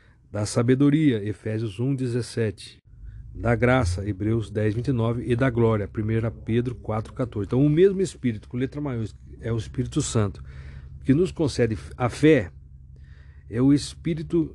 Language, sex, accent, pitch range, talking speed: Portuguese, male, Brazilian, 100-125 Hz, 145 wpm